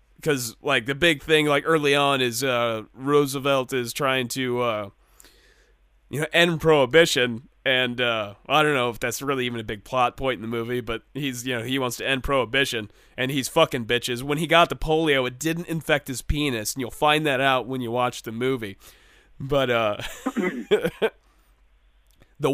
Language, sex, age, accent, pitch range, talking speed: English, male, 30-49, American, 115-145 Hz, 190 wpm